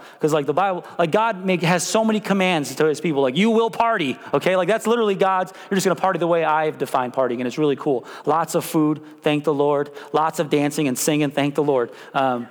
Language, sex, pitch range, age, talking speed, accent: English, male, 170-235 Hz, 30-49, 245 wpm, American